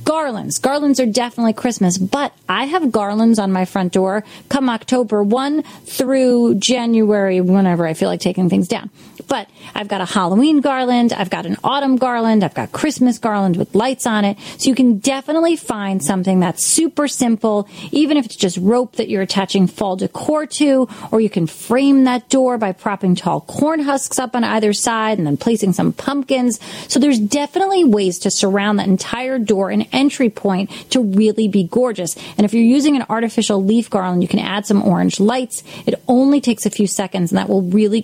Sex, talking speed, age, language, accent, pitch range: female, 195 wpm, 30-49, English, American, 195-250 Hz